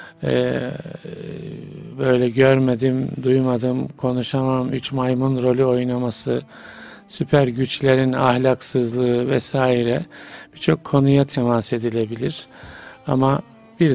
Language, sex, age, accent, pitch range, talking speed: Turkish, male, 50-69, native, 125-145 Hz, 80 wpm